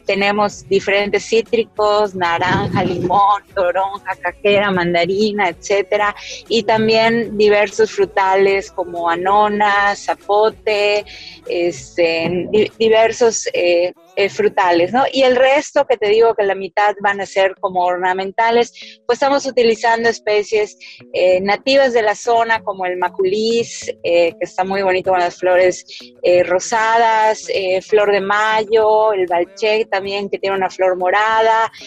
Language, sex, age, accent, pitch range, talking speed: Spanish, female, 20-39, Mexican, 190-225 Hz, 130 wpm